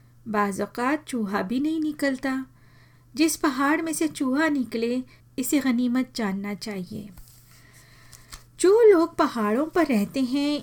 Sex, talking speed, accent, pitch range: female, 120 wpm, native, 205-260 Hz